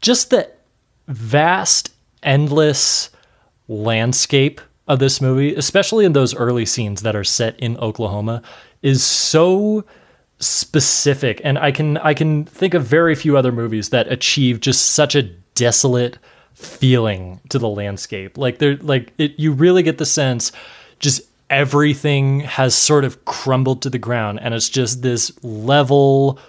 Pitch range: 115-150 Hz